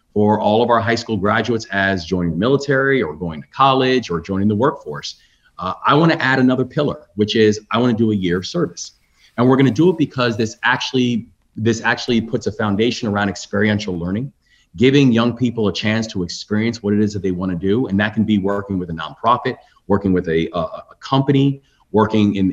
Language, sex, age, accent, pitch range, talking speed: English, male, 30-49, American, 95-120 Hz, 215 wpm